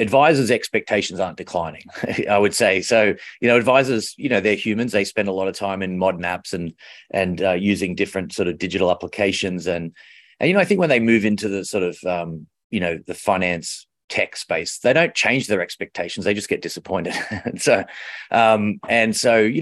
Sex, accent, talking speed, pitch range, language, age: male, Australian, 210 wpm, 95-110 Hz, English, 30-49